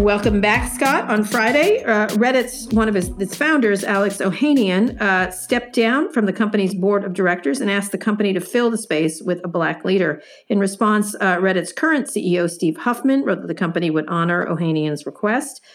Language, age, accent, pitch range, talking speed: English, 50-69, American, 175-220 Hz, 190 wpm